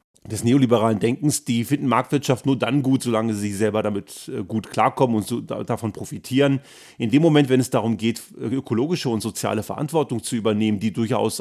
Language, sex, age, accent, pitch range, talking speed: German, male, 40-59, German, 110-135 Hz, 180 wpm